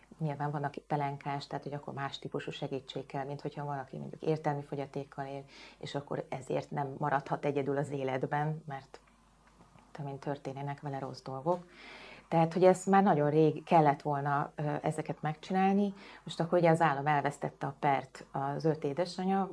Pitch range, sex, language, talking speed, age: 140-175 Hz, female, Hungarian, 155 wpm, 30-49